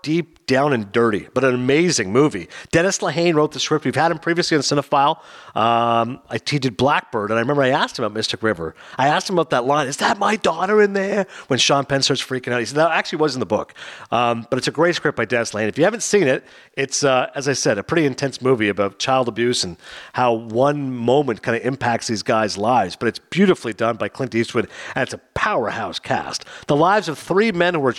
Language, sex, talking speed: English, male, 240 wpm